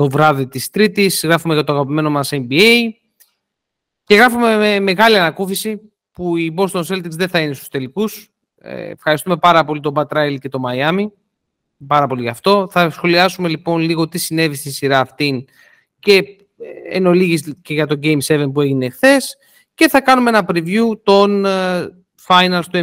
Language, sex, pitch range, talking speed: Greek, male, 160-210 Hz, 165 wpm